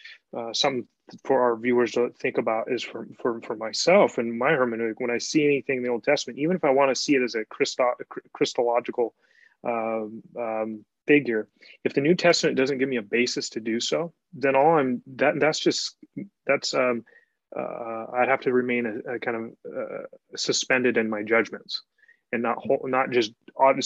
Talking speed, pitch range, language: 200 wpm, 115-145 Hz, English